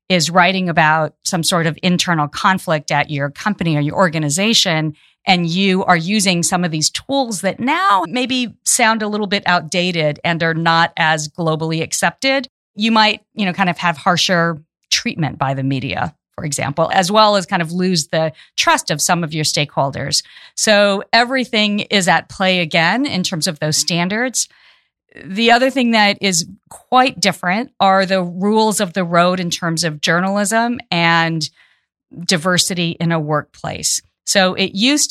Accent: American